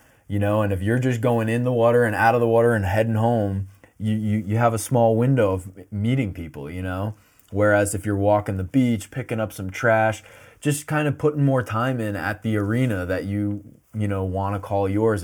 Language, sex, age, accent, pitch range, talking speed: English, male, 20-39, American, 95-115 Hz, 225 wpm